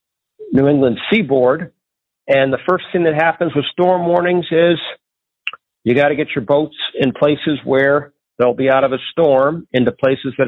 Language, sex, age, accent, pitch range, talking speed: English, male, 50-69, American, 125-155 Hz, 180 wpm